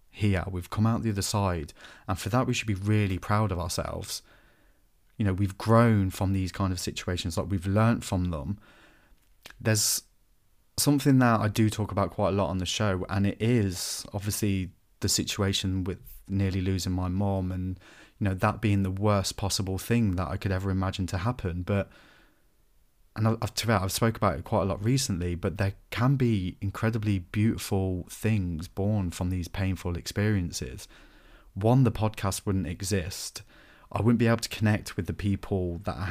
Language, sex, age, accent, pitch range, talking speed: English, male, 30-49, British, 95-105 Hz, 185 wpm